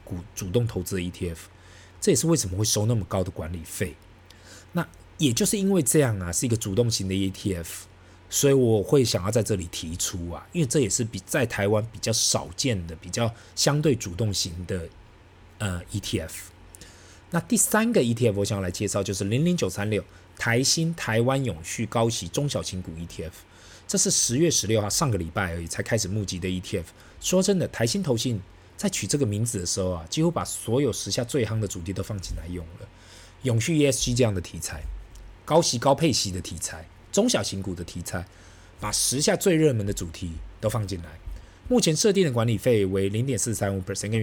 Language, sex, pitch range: Chinese, male, 90-125 Hz